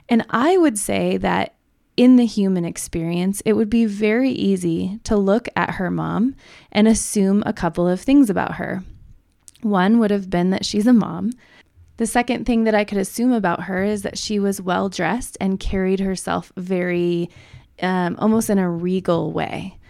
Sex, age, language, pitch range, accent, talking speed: female, 20-39, English, 180-225 Hz, American, 180 wpm